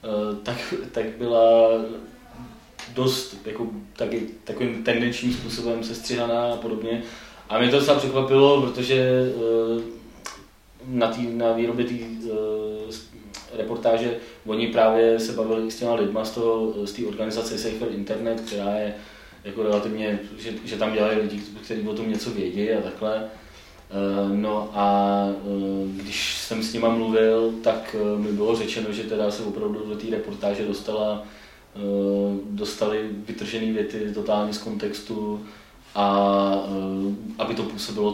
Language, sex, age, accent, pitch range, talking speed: Czech, male, 20-39, native, 100-115 Hz, 130 wpm